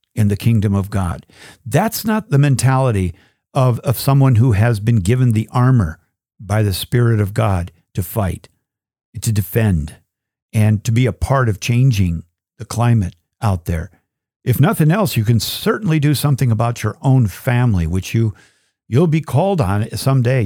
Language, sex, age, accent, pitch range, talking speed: English, male, 50-69, American, 105-140 Hz, 165 wpm